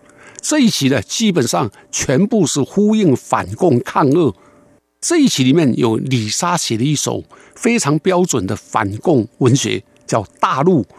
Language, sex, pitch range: Chinese, male, 130-195 Hz